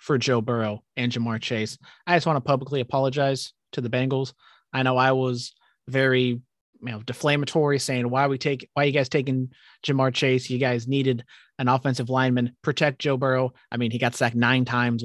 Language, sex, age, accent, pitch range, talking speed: English, male, 30-49, American, 115-140 Hz, 205 wpm